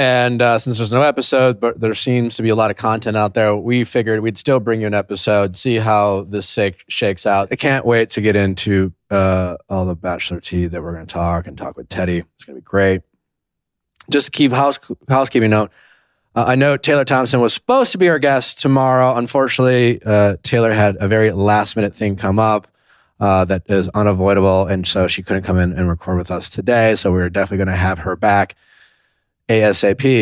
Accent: American